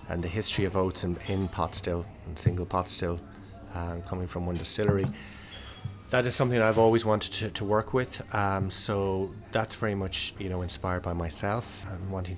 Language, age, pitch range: English, 30-49, 90-100 Hz